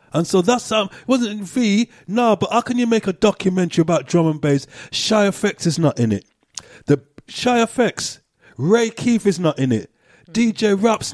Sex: male